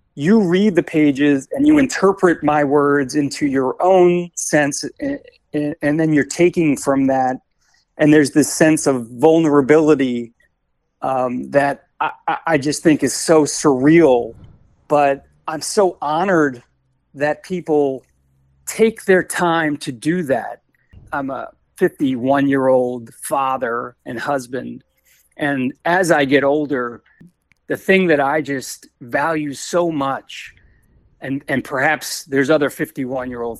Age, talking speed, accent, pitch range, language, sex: 40-59, 130 wpm, American, 135-165 Hz, English, male